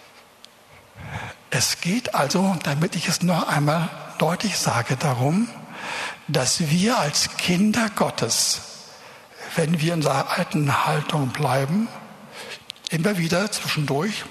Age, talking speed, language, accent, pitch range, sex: 60-79, 110 wpm, German, German, 150-195 Hz, male